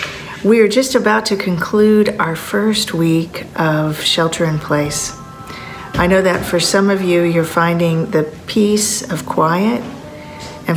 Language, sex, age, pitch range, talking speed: English, female, 50-69, 160-190 Hz, 140 wpm